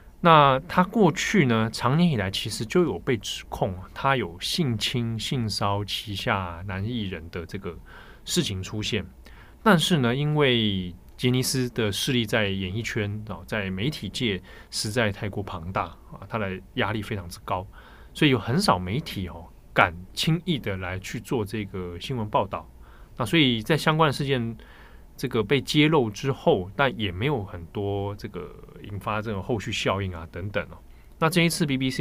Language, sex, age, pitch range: Chinese, male, 20-39, 95-130 Hz